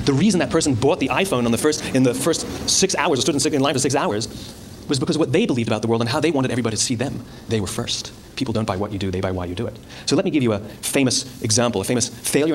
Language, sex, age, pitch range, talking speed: English, male, 30-49, 110-145 Hz, 310 wpm